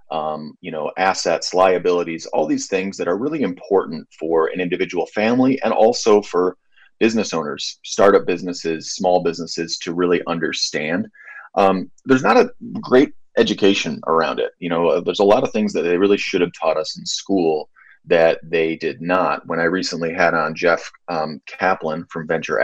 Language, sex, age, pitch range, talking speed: English, male, 30-49, 80-100 Hz, 175 wpm